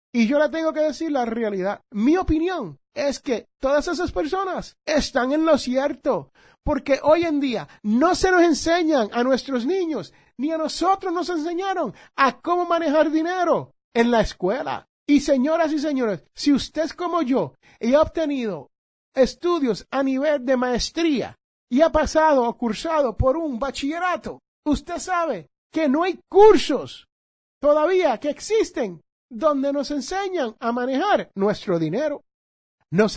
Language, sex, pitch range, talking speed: Spanish, male, 235-325 Hz, 150 wpm